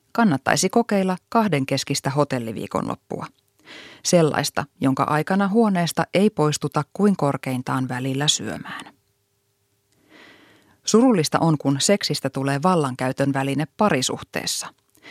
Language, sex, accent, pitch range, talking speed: Finnish, female, native, 135-195 Hz, 90 wpm